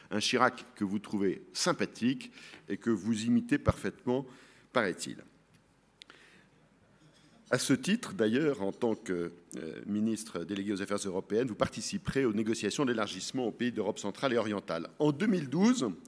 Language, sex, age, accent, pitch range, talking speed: French, male, 50-69, French, 100-130 Hz, 140 wpm